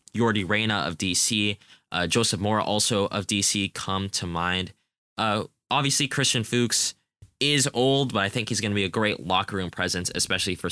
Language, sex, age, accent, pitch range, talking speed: English, male, 10-29, American, 90-115 Hz, 185 wpm